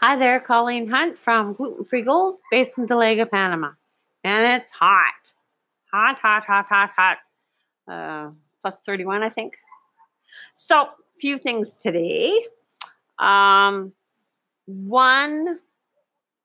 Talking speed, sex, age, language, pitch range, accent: 110 wpm, female, 40-59, English, 175-225 Hz, American